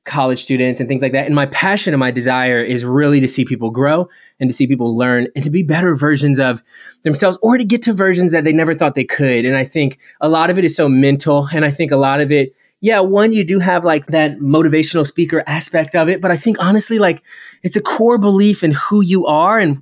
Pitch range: 130-170 Hz